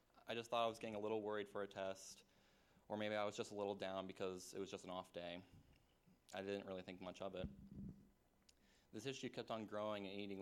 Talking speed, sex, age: 235 wpm, male, 20-39